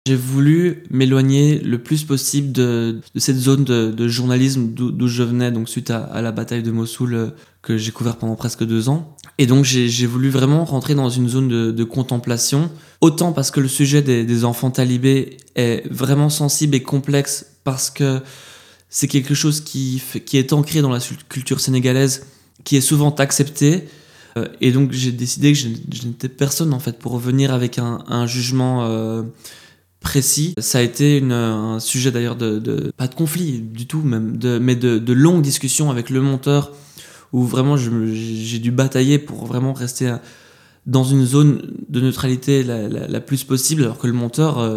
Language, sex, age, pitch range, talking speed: French, male, 20-39, 120-140 Hz, 190 wpm